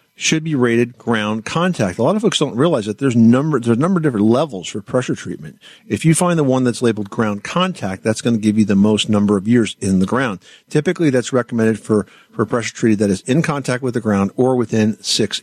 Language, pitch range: English, 105-125 Hz